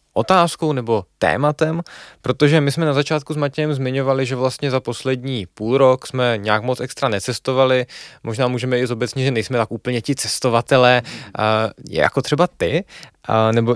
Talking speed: 160 wpm